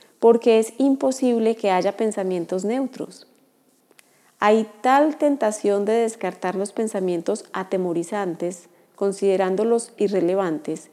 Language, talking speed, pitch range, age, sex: Spanish, 95 wpm, 190-225 Hz, 30-49, female